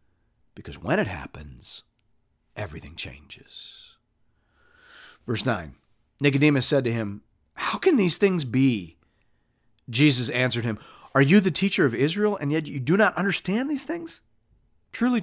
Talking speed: 140 wpm